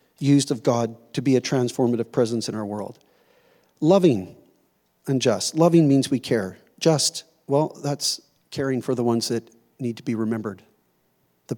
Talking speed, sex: 160 wpm, male